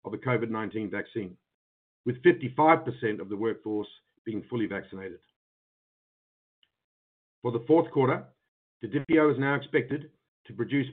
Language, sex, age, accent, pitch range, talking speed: English, male, 50-69, Australian, 110-140 Hz, 120 wpm